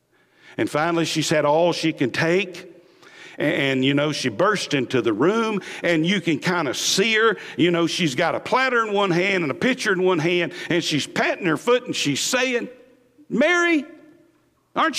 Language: English